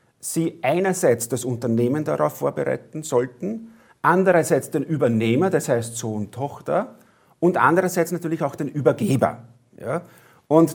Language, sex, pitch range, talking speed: German, male, 125-170 Hz, 130 wpm